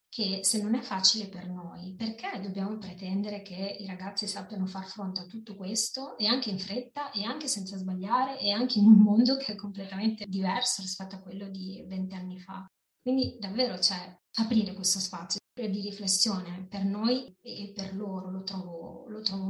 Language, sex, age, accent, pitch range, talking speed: Italian, female, 20-39, native, 185-215 Hz, 185 wpm